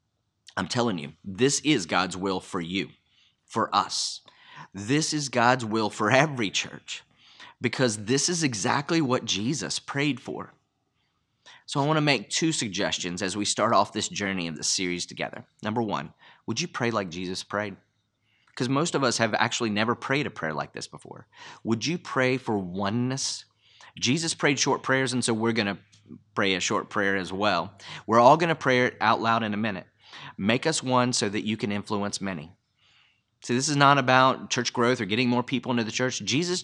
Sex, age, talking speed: male, 30-49, 190 wpm